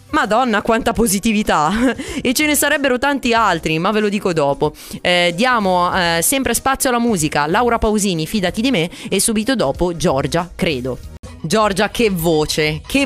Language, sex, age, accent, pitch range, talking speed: Italian, female, 20-39, native, 180-245 Hz, 160 wpm